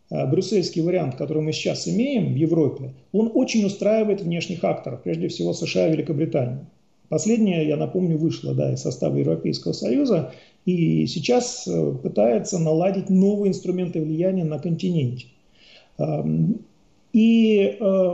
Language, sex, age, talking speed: Russian, male, 40-59, 120 wpm